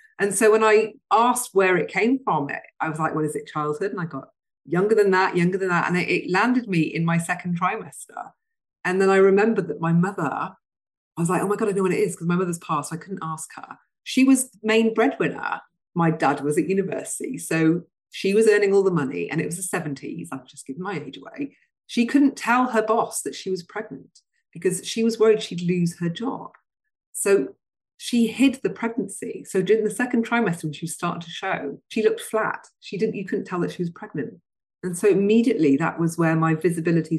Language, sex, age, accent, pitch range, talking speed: English, female, 40-59, British, 160-210 Hz, 225 wpm